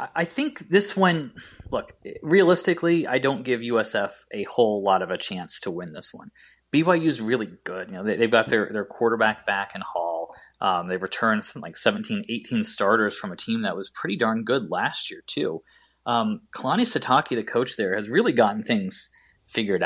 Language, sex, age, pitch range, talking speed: English, male, 20-39, 115-180 Hz, 195 wpm